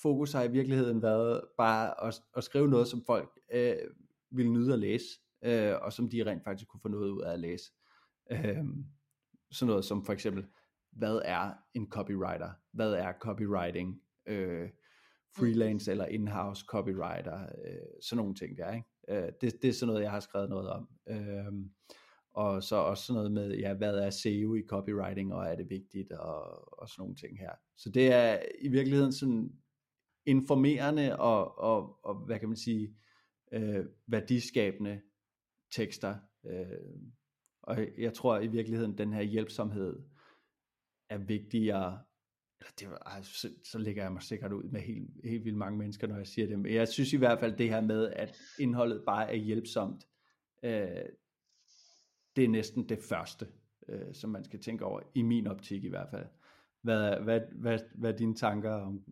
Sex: male